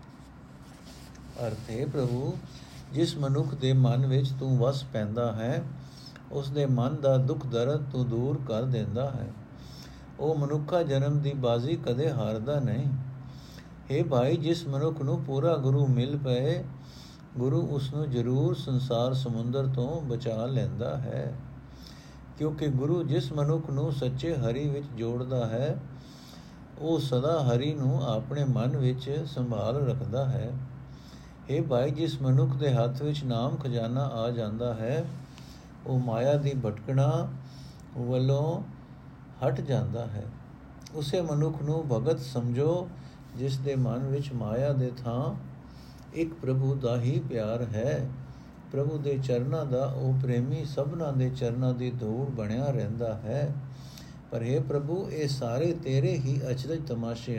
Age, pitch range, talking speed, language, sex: 50-69, 125-145 Hz, 130 wpm, Punjabi, male